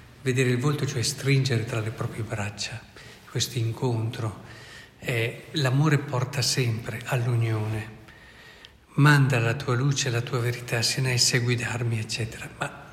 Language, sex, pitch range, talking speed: Italian, male, 120-140 Hz, 130 wpm